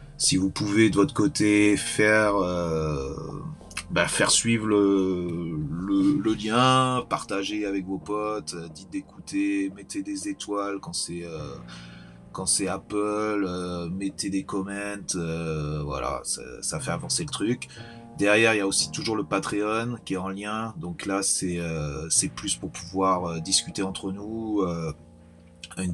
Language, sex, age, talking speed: French, male, 30-49, 155 wpm